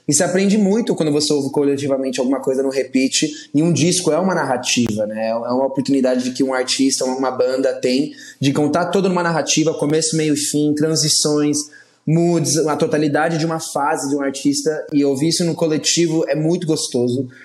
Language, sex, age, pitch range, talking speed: Portuguese, male, 20-39, 130-170 Hz, 185 wpm